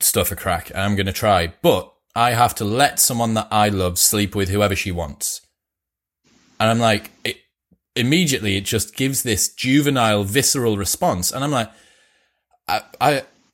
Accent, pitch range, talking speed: British, 95-130 Hz, 170 wpm